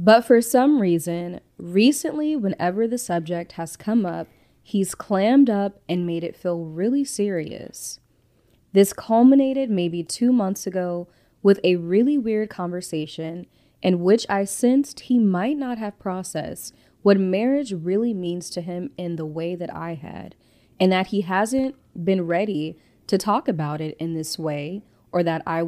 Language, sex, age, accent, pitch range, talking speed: English, female, 20-39, American, 170-215 Hz, 160 wpm